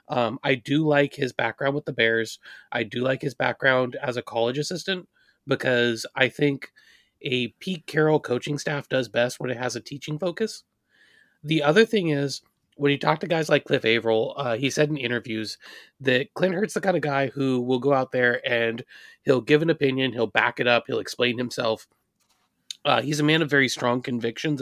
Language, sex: English, male